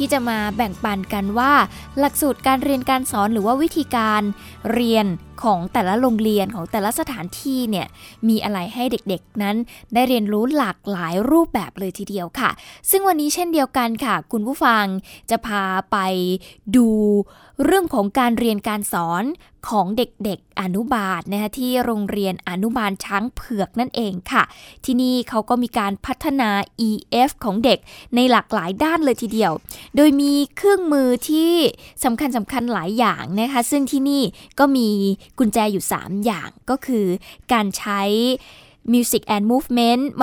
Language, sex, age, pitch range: Thai, female, 10-29, 205-255 Hz